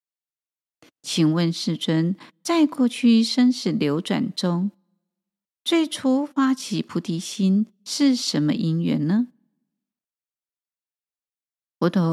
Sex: female